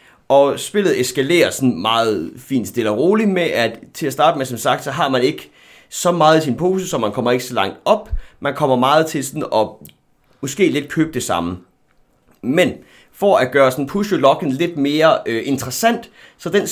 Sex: male